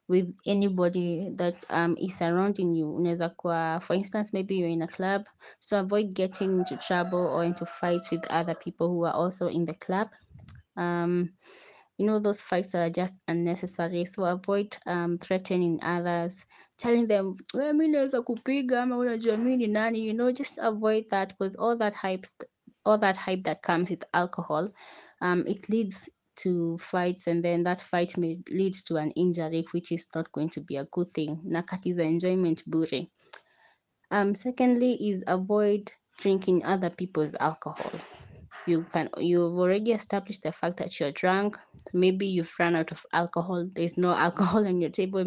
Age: 20-39